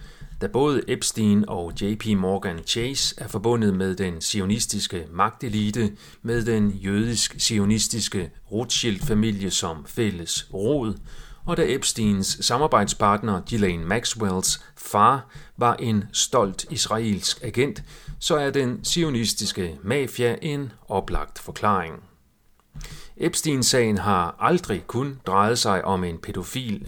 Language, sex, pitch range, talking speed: Danish, male, 100-125 Hz, 110 wpm